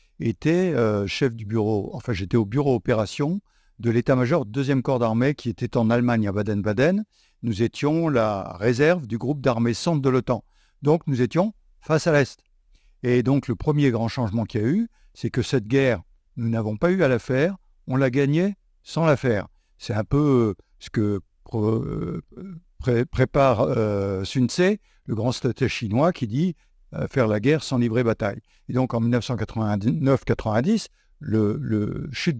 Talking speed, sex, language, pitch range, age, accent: 175 wpm, male, French, 110-145 Hz, 60-79, French